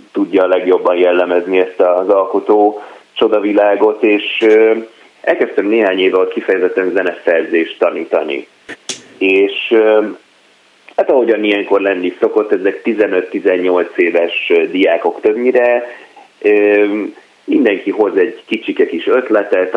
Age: 30-49